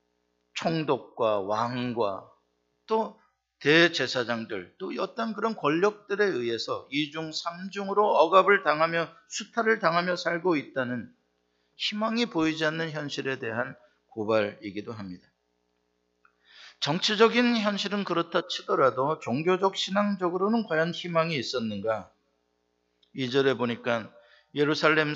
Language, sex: Korean, male